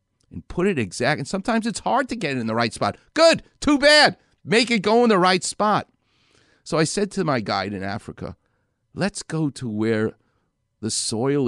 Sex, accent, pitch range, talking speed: male, American, 105-145 Hz, 205 wpm